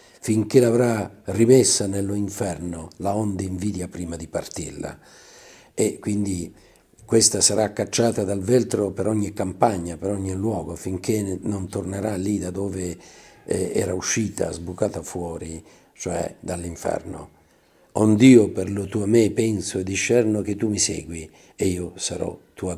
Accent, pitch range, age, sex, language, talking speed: native, 95-115 Hz, 50-69, male, Italian, 145 wpm